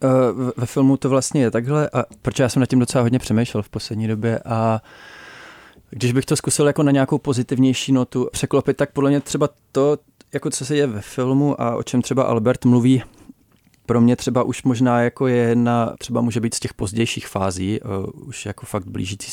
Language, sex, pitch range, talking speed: Czech, male, 110-130 Hz, 200 wpm